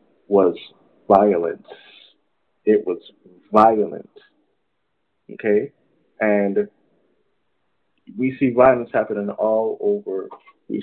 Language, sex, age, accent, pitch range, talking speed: English, male, 30-49, American, 105-140 Hz, 80 wpm